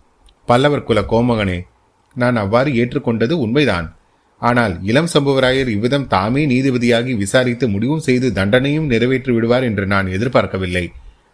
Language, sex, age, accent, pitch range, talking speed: Tamil, male, 30-49, native, 100-125 Hz, 115 wpm